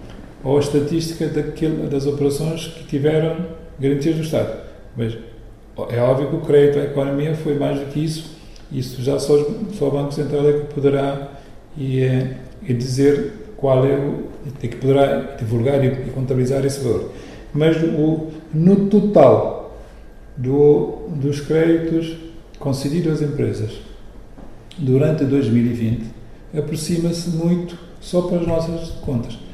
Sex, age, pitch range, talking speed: male, 40-59, 130-160 Hz, 130 wpm